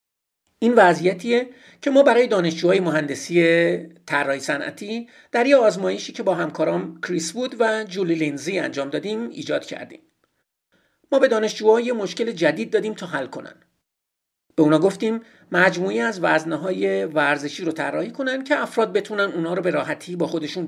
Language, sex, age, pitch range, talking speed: Persian, male, 50-69, 170-240 Hz, 150 wpm